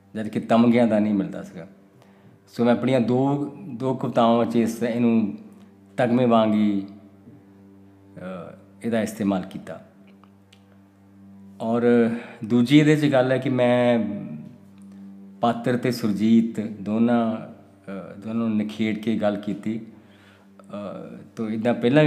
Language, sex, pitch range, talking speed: Punjabi, male, 100-120 Hz, 115 wpm